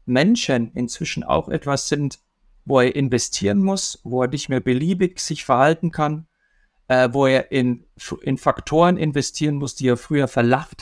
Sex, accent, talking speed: male, German, 160 wpm